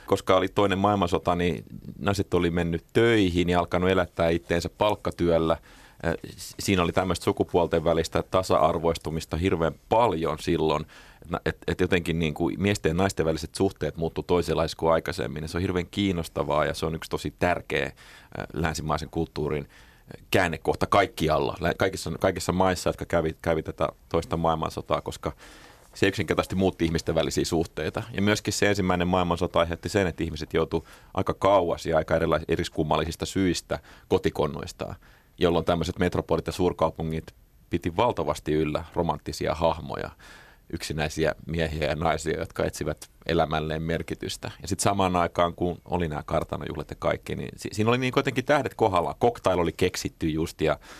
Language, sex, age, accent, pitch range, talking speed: Finnish, male, 30-49, native, 80-95 Hz, 145 wpm